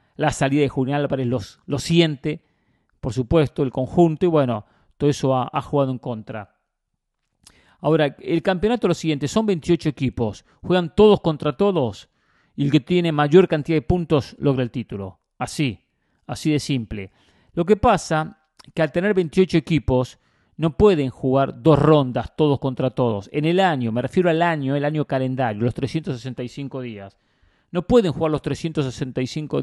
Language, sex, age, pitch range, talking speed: English, male, 40-59, 130-165 Hz, 170 wpm